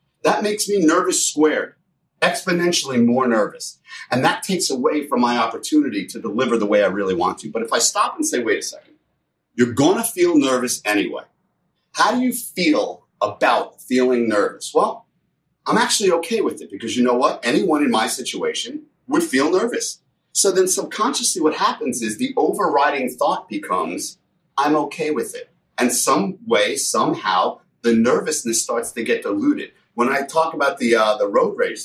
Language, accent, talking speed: English, American, 180 wpm